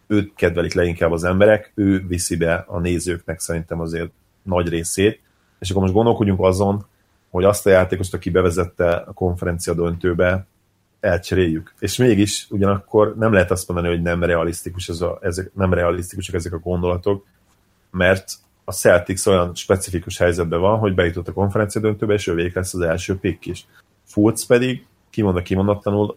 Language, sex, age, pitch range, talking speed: Hungarian, male, 30-49, 85-100 Hz, 160 wpm